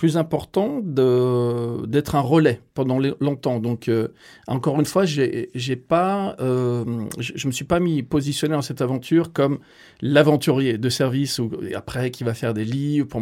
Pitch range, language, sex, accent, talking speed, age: 120-150 Hz, French, male, French, 170 wpm, 40-59